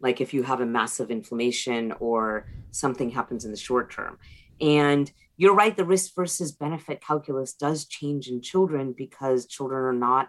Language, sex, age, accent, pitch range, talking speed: English, female, 30-49, American, 125-160 Hz, 175 wpm